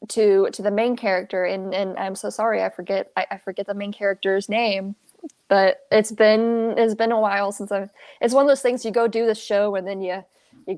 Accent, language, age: American, English, 10-29